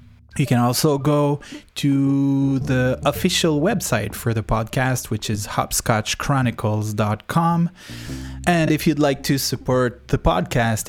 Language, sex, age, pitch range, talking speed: English, male, 20-39, 110-135 Hz, 120 wpm